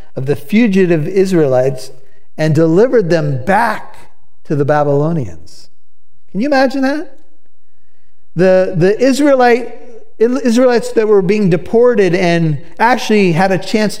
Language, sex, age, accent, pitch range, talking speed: English, male, 50-69, American, 150-195 Hz, 115 wpm